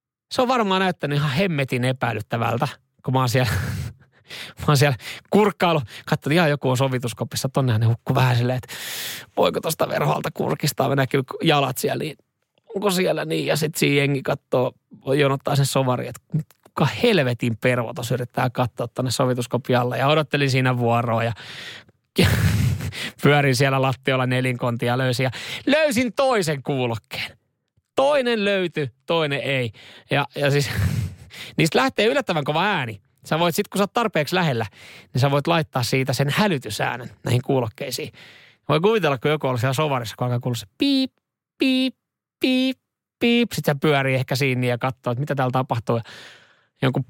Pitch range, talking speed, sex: 125-160 Hz, 150 wpm, male